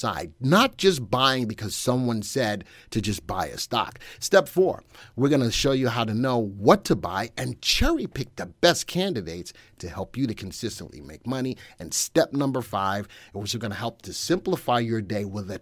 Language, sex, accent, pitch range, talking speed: English, male, American, 105-165 Hz, 205 wpm